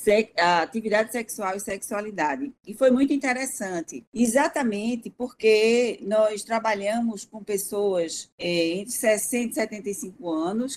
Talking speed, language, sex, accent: 110 wpm, Portuguese, female, Brazilian